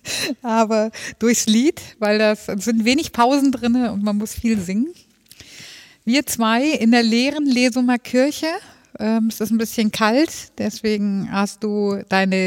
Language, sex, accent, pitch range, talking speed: German, female, German, 185-225 Hz, 155 wpm